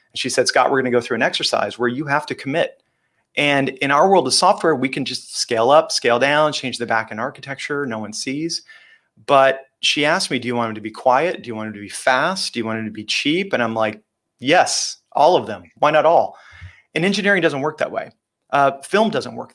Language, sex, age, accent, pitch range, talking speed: English, male, 30-49, American, 115-155 Hz, 250 wpm